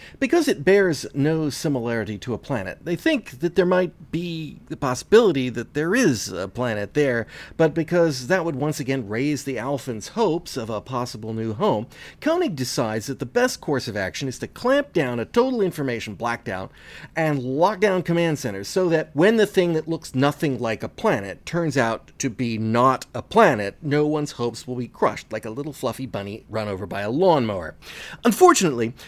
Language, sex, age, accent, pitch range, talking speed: English, male, 40-59, American, 120-175 Hz, 195 wpm